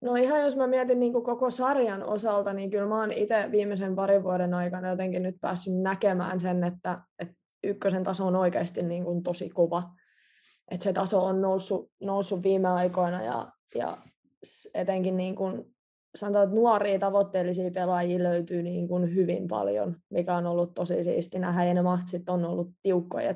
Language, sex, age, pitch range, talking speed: Finnish, female, 20-39, 180-200 Hz, 165 wpm